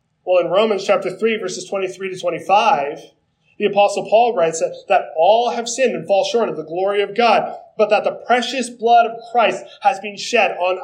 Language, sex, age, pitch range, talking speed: English, male, 20-39, 185-240 Hz, 205 wpm